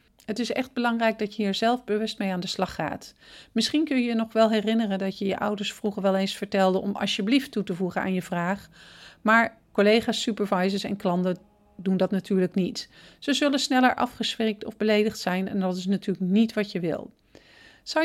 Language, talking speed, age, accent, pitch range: Dutch, 205 wpm, 40-59, Dutch, 195-255 Hz